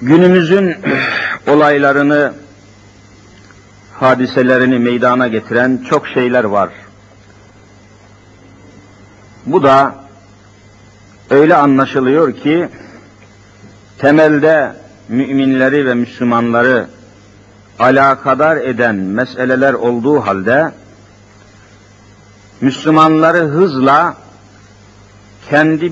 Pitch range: 105-145 Hz